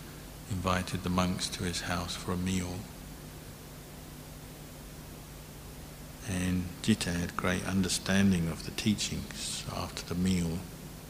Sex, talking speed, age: male, 110 wpm, 60-79